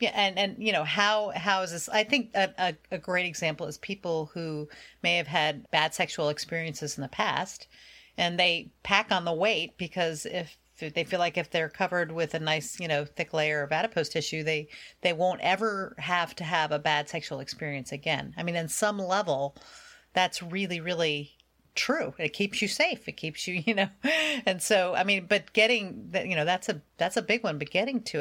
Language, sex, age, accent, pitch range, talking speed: English, female, 40-59, American, 160-205 Hz, 215 wpm